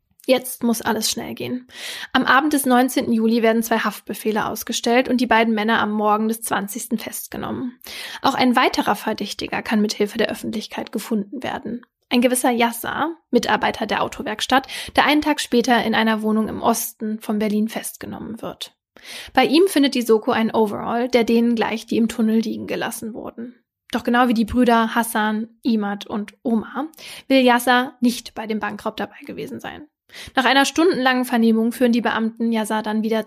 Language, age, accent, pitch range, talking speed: German, 10-29, German, 225-260 Hz, 175 wpm